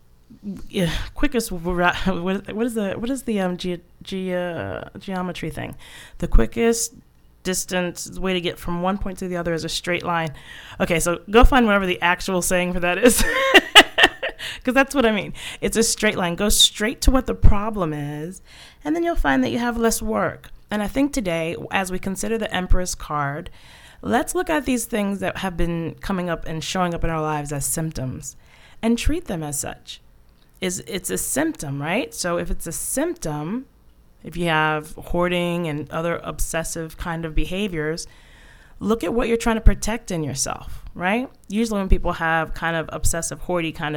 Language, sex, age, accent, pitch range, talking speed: English, female, 20-39, American, 165-225 Hz, 190 wpm